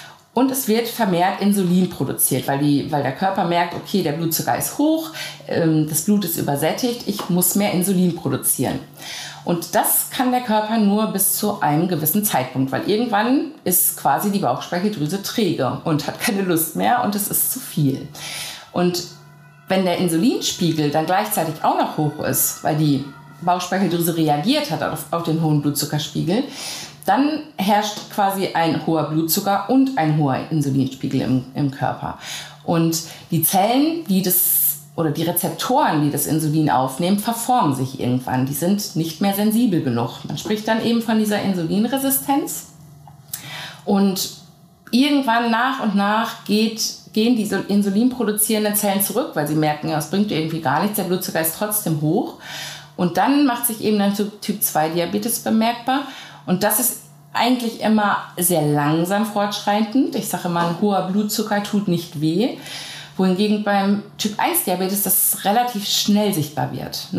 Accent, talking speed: German, 155 wpm